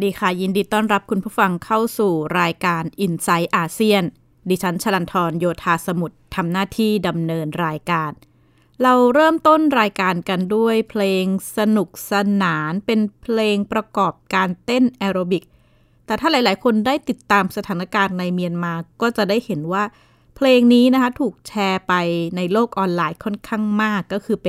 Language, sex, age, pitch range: Thai, female, 20-39, 170-215 Hz